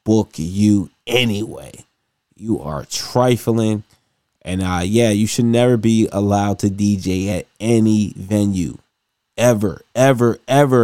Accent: American